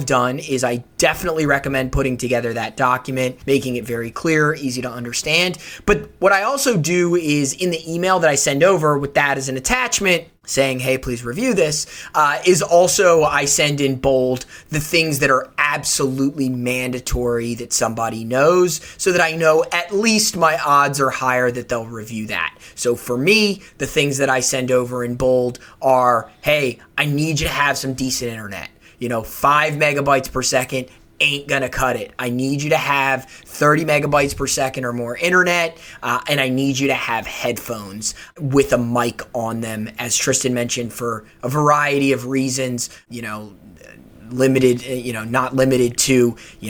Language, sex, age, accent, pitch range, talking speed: English, male, 20-39, American, 120-150 Hz, 185 wpm